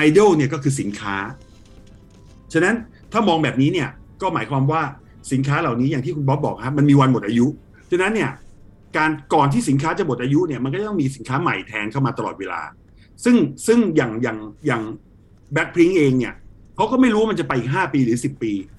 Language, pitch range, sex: Thai, 115-155 Hz, male